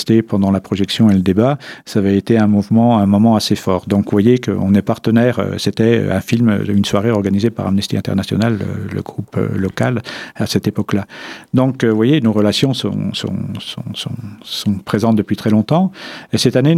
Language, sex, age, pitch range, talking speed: French, male, 50-69, 100-115 Hz, 190 wpm